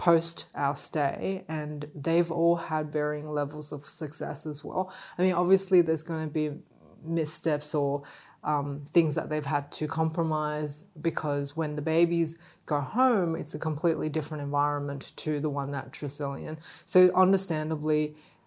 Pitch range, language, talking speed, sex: 150-175 Hz, English, 155 wpm, female